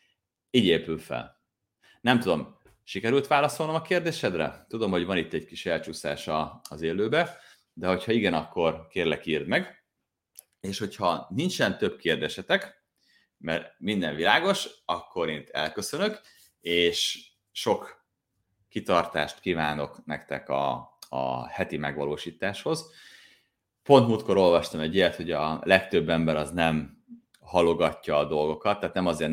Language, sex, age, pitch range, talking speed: Hungarian, male, 30-49, 80-95 Hz, 125 wpm